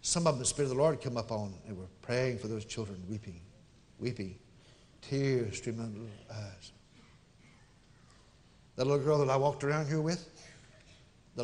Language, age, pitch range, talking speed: English, 60-79, 110-150 Hz, 185 wpm